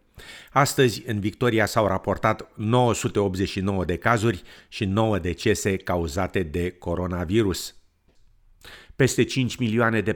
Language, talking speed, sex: Romanian, 105 wpm, male